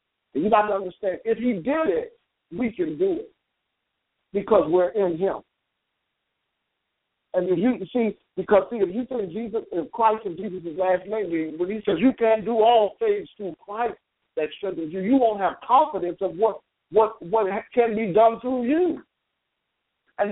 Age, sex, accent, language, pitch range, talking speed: 60-79, male, American, English, 175-240 Hz, 170 wpm